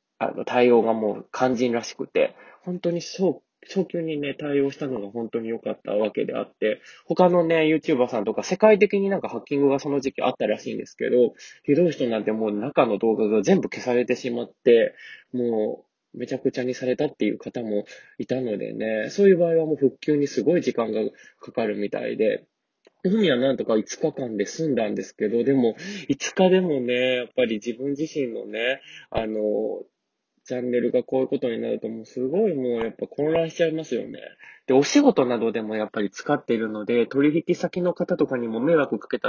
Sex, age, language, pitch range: male, 20-39, Japanese, 120-175 Hz